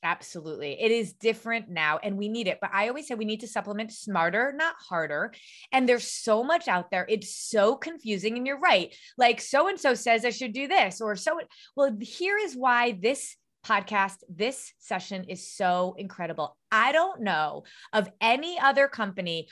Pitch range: 210-300 Hz